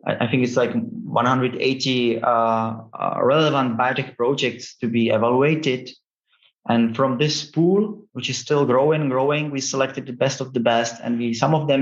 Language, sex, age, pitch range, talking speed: English, male, 30-49, 120-140 Hz, 175 wpm